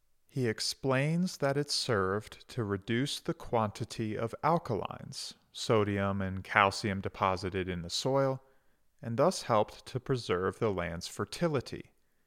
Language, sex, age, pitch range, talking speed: English, male, 40-59, 95-135 Hz, 125 wpm